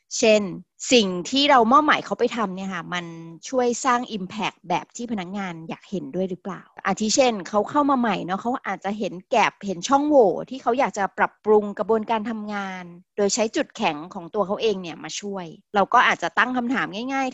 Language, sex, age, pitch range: Thai, female, 30-49, 185-235 Hz